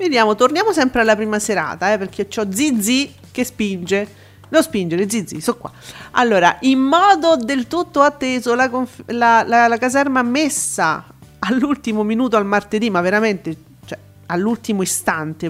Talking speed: 155 wpm